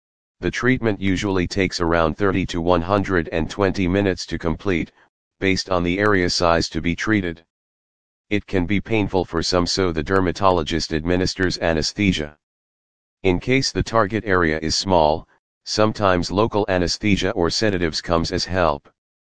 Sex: male